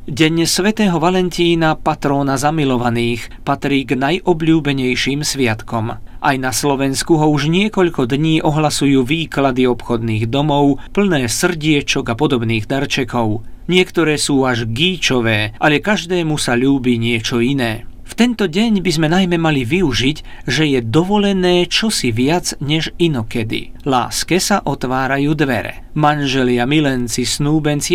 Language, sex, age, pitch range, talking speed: Slovak, male, 40-59, 125-165 Hz, 125 wpm